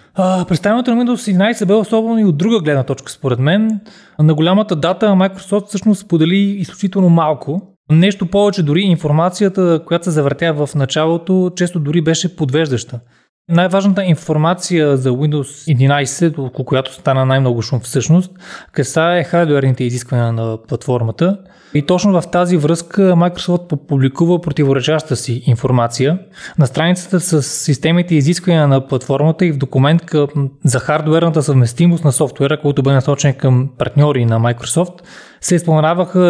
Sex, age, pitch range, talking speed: male, 20-39, 145-175 Hz, 140 wpm